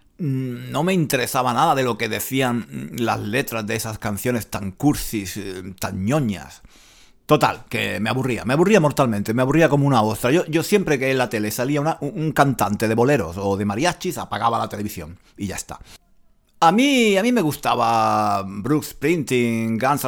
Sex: male